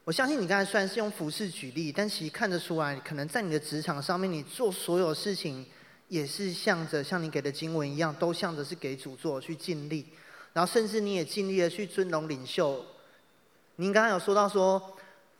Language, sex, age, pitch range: Chinese, male, 30-49, 160-200 Hz